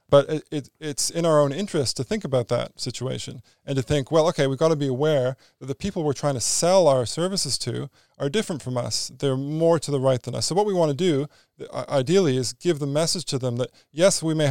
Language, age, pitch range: English, 20-39, 125-155 Hz